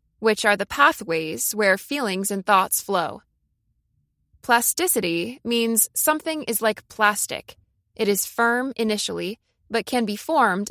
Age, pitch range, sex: 20-39, 200-255 Hz, female